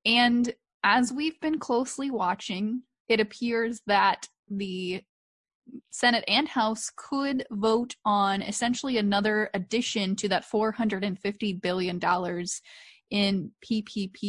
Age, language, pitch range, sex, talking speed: 20-39, English, 195-235 Hz, female, 110 wpm